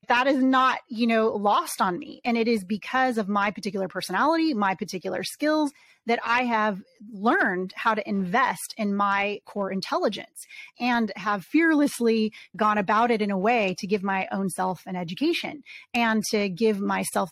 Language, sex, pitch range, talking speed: English, female, 200-240 Hz, 175 wpm